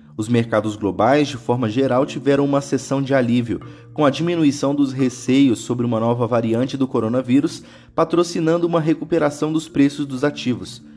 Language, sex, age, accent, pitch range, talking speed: Portuguese, male, 20-39, Brazilian, 115-145 Hz, 160 wpm